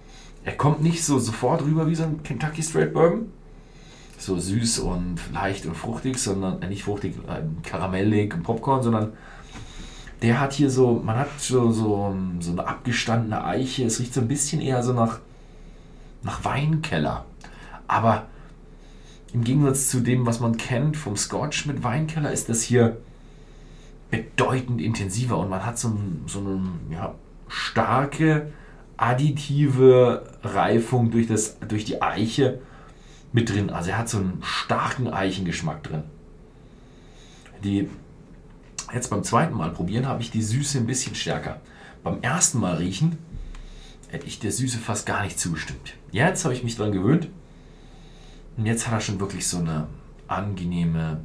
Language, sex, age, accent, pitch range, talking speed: German, male, 40-59, German, 100-135 Hz, 150 wpm